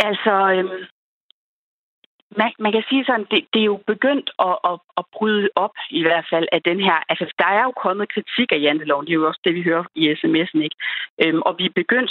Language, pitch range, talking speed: Danish, 160-210 Hz, 235 wpm